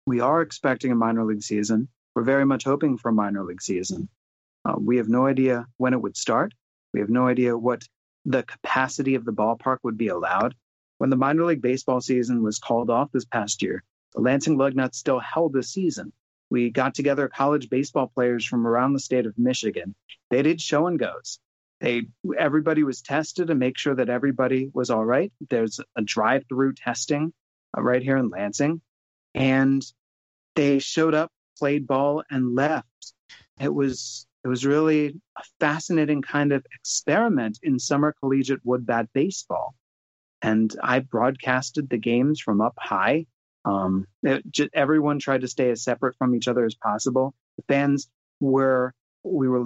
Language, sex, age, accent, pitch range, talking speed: English, male, 30-49, American, 120-140 Hz, 175 wpm